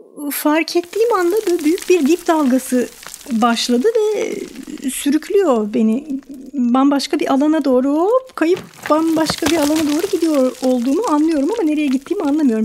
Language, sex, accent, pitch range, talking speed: Turkish, female, native, 245-300 Hz, 135 wpm